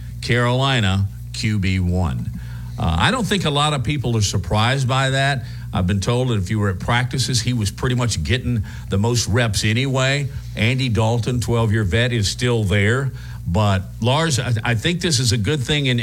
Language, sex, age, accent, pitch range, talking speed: English, male, 50-69, American, 95-130 Hz, 185 wpm